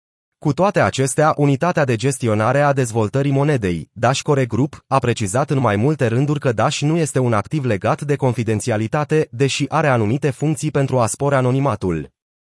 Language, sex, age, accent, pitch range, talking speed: Romanian, male, 30-49, native, 115-150 Hz, 165 wpm